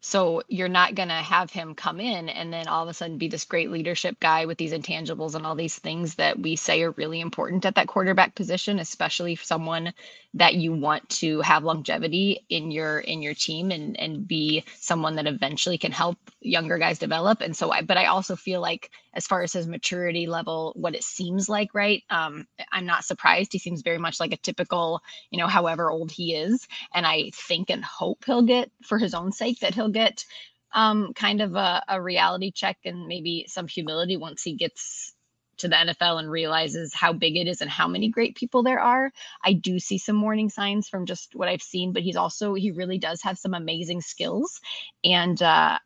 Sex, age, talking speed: female, 20-39, 215 wpm